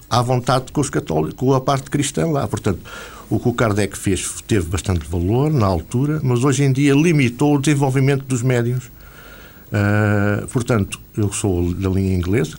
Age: 50-69